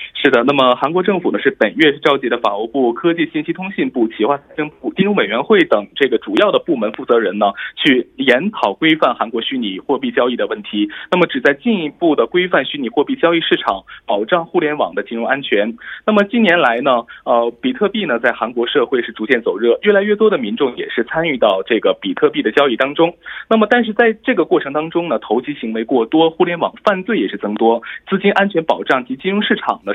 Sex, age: male, 20-39